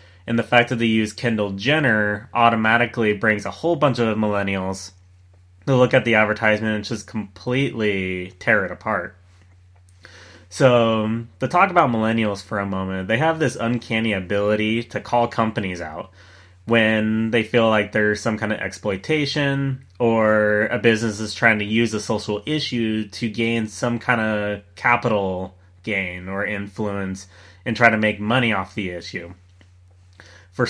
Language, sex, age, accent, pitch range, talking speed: English, male, 20-39, American, 95-120 Hz, 155 wpm